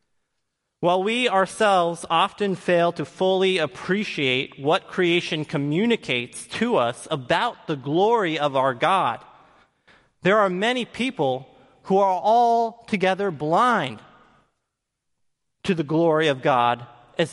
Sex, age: male, 30-49